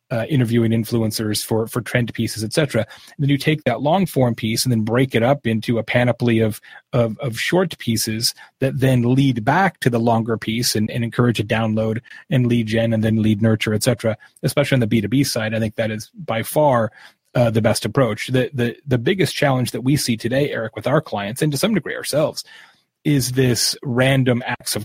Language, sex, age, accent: English, male, 30-49, American